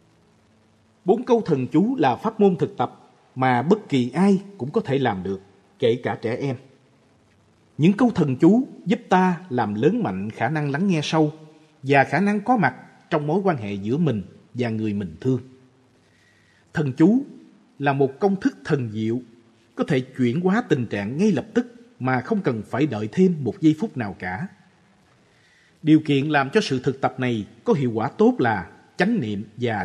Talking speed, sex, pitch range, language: 190 wpm, male, 120-190 Hz, Vietnamese